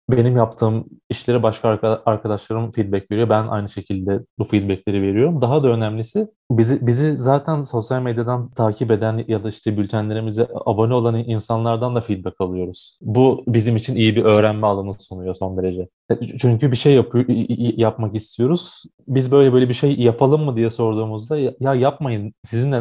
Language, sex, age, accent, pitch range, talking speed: Turkish, male, 30-49, native, 110-130 Hz, 160 wpm